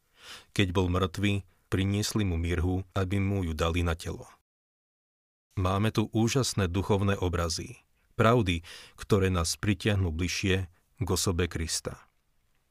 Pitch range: 85-105 Hz